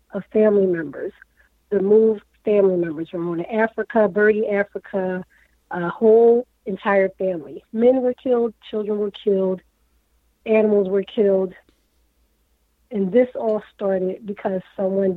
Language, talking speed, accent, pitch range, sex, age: English, 120 wpm, American, 185-220 Hz, female, 40-59